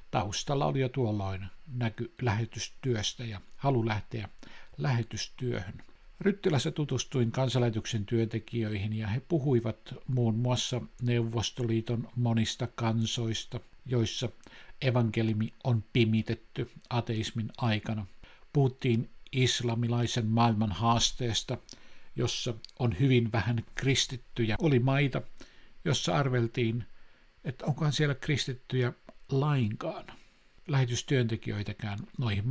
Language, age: Finnish, 60-79